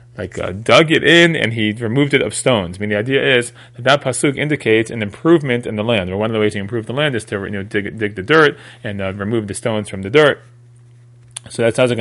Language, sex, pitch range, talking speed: English, male, 105-125 Hz, 270 wpm